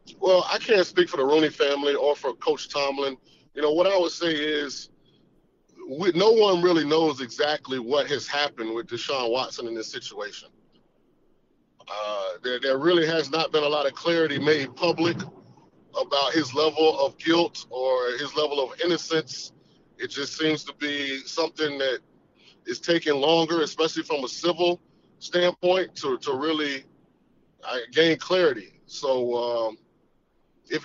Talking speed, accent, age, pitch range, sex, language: 155 wpm, American, 30-49, 140-175 Hz, male, English